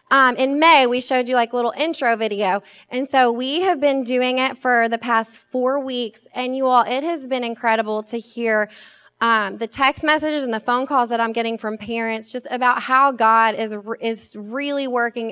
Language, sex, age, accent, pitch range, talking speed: English, female, 20-39, American, 215-260 Hz, 210 wpm